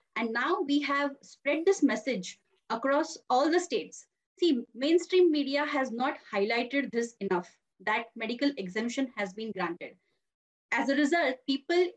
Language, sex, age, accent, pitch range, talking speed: English, female, 30-49, Indian, 230-295 Hz, 145 wpm